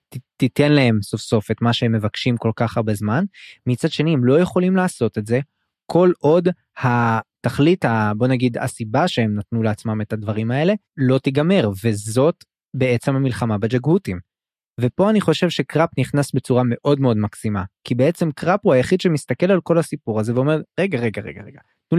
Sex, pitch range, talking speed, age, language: male, 115-150 Hz, 170 wpm, 20-39, Hebrew